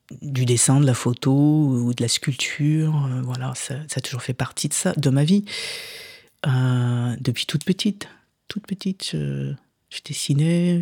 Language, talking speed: French, 170 wpm